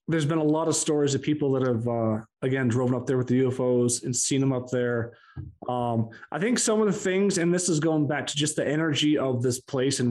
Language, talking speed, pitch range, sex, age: English, 255 wpm, 125-155 Hz, male, 30-49